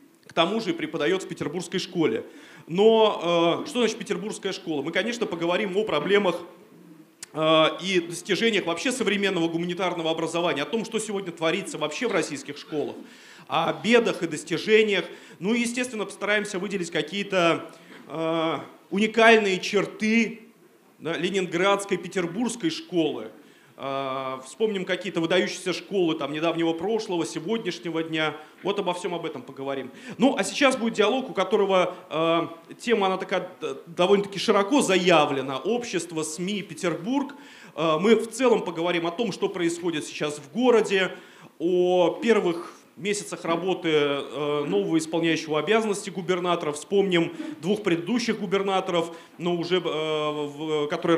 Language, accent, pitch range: Russian, native, 165-205 Hz